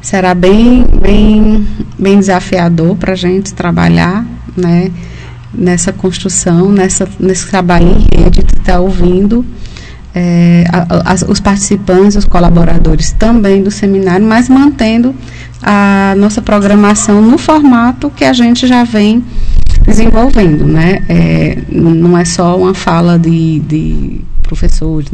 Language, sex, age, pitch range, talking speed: Portuguese, female, 20-39, 170-195 Hz, 125 wpm